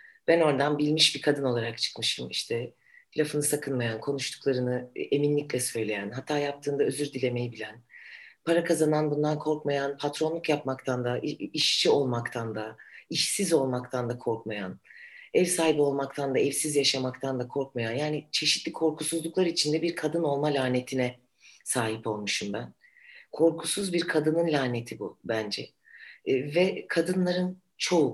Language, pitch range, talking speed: Turkish, 125-160 Hz, 130 wpm